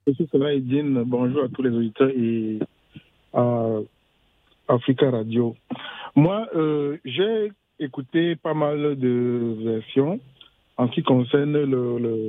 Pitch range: 120-145 Hz